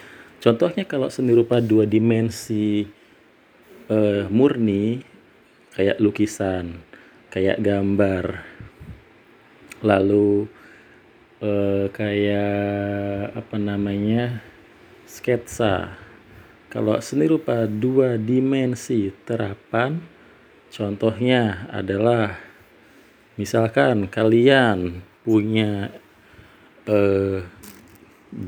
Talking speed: 65 wpm